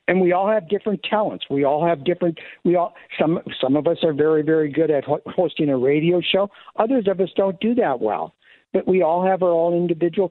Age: 60-79